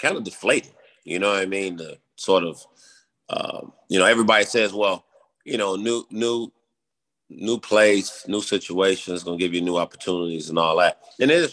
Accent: American